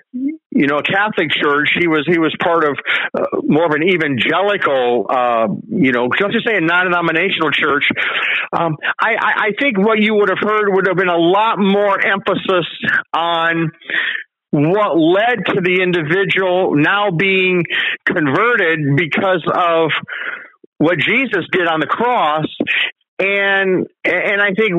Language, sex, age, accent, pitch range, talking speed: English, male, 50-69, American, 175-215 Hz, 150 wpm